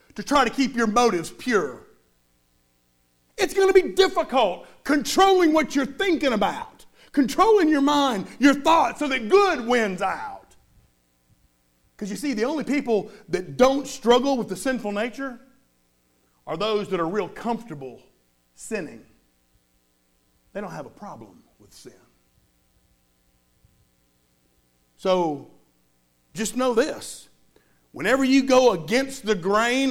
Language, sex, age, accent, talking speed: English, male, 50-69, American, 130 wpm